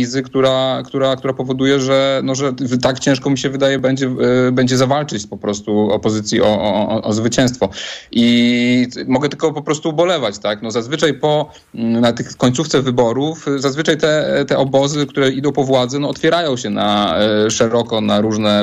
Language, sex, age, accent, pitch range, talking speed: Polish, male, 30-49, native, 110-135 Hz, 165 wpm